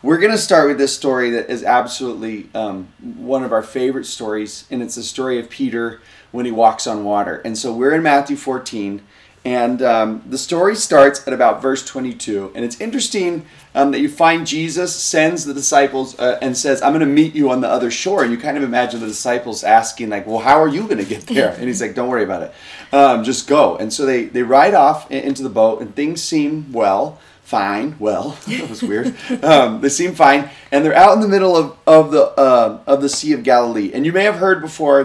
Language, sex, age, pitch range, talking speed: English, male, 30-49, 115-155 Hz, 230 wpm